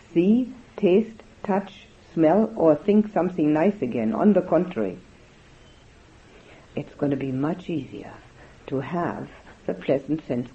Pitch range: 135-205 Hz